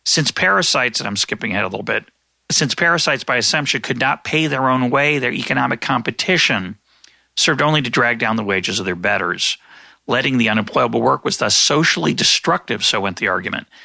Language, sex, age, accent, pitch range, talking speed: English, male, 40-59, American, 110-130 Hz, 190 wpm